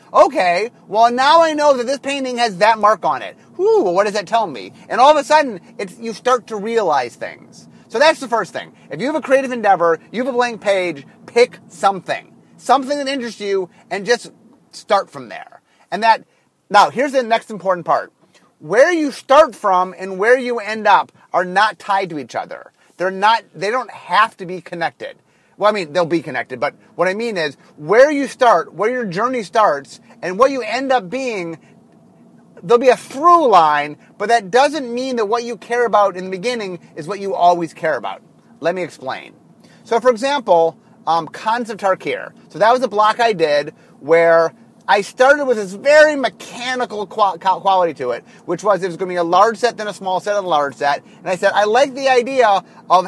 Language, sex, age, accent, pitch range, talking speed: English, male, 30-49, American, 185-245 Hz, 210 wpm